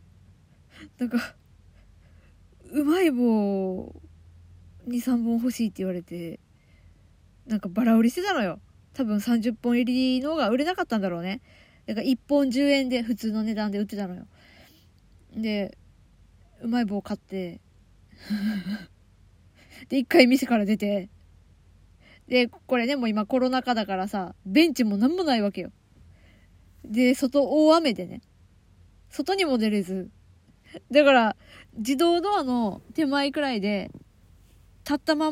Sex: female